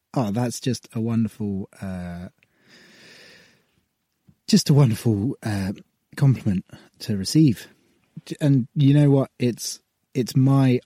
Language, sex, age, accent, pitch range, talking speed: English, male, 20-39, British, 95-130 Hz, 110 wpm